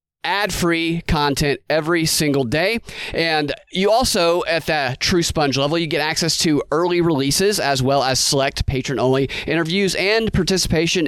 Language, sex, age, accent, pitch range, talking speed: English, male, 30-49, American, 140-190 Hz, 150 wpm